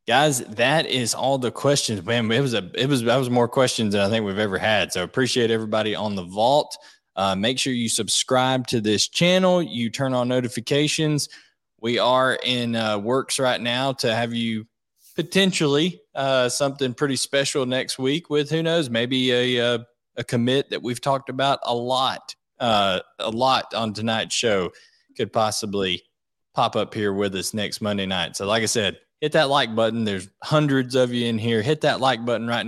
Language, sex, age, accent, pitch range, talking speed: English, male, 20-39, American, 110-130 Hz, 195 wpm